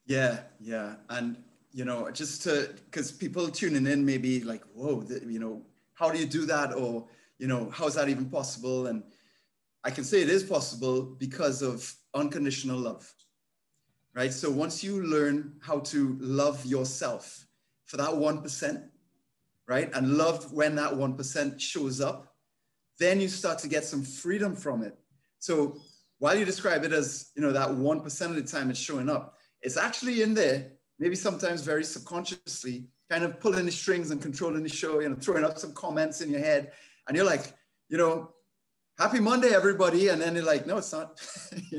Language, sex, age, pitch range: English, male, 30-49, 140-180 Hz